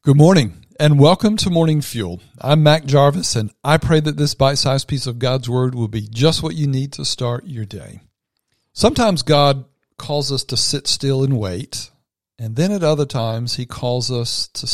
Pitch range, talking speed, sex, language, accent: 115-145 Hz, 195 wpm, male, English, American